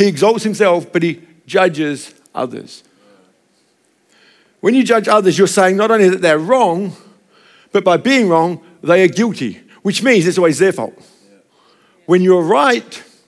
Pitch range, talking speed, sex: 175-225 Hz, 155 wpm, male